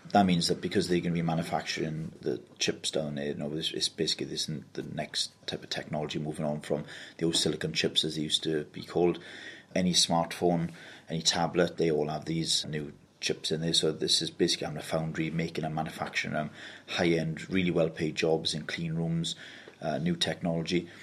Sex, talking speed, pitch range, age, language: male, 195 wpm, 80-90 Hz, 30-49, English